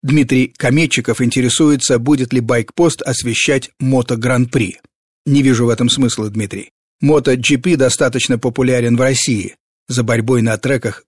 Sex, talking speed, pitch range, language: male, 130 wpm, 120-145 Hz, Russian